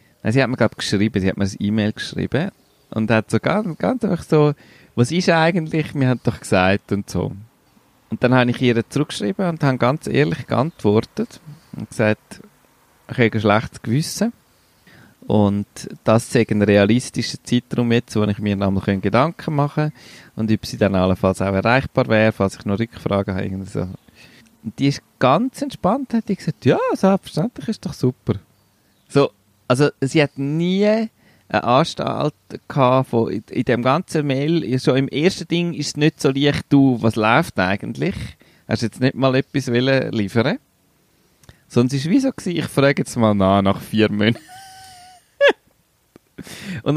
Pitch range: 110-155 Hz